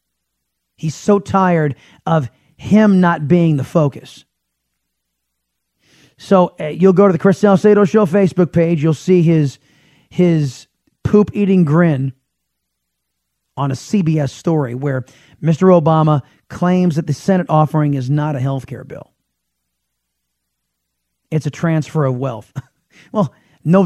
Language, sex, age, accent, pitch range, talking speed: English, male, 30-49, American, 135-180 Hz, 130 wpm